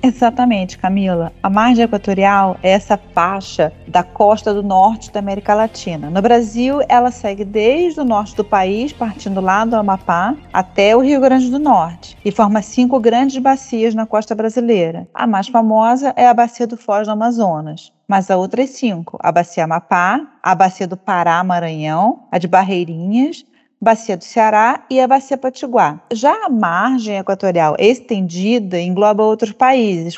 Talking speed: 165 wpm